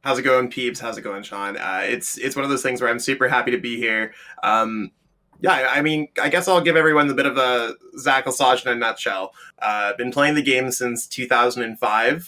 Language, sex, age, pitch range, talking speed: English, male, 20-39, 120-140 Hz, 240 wpm